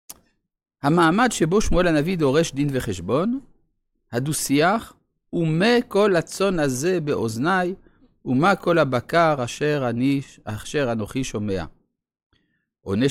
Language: Hebrew